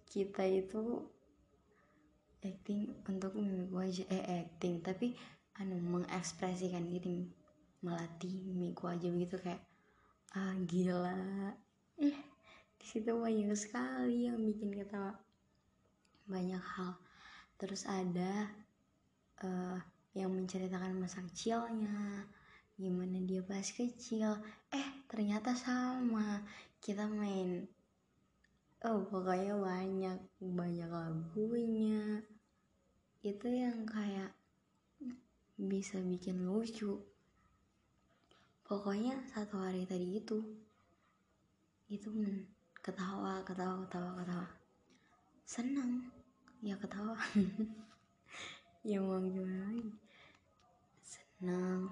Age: 20-39